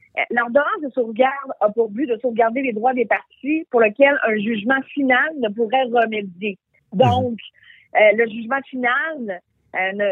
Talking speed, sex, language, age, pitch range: 160 wpm, female, French, 40-59, 210-260 Hz